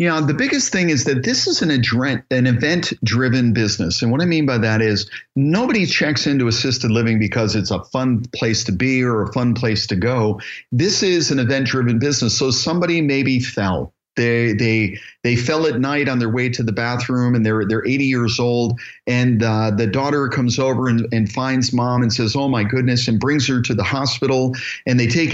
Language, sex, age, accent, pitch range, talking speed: English, male, 50-69, American, 115-135 Hz, 210 wpm